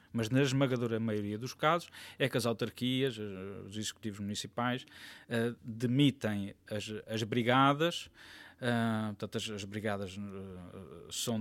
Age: 20-39